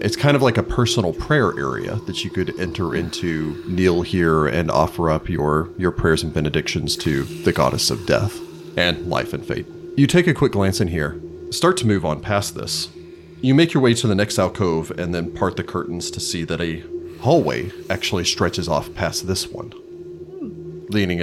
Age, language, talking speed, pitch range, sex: 40-59, English, 200 wpm, 85-145 Hz, male